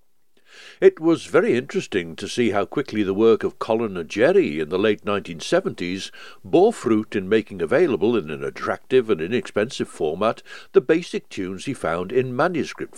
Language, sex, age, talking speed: English, male, 60-79, 165 wpm